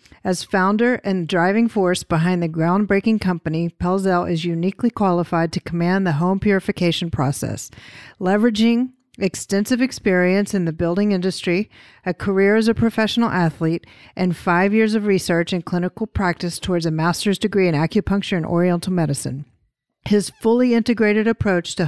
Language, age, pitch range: English, 50-69, 170-200 Hz